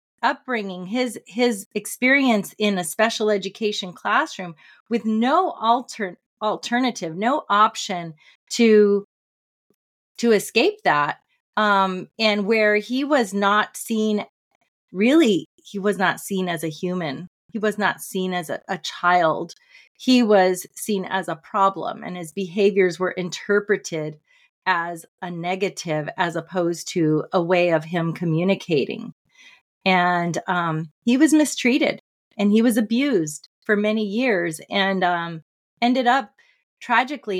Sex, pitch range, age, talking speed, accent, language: female, 185-240 Hz, 30-49, 130 wpm, American, English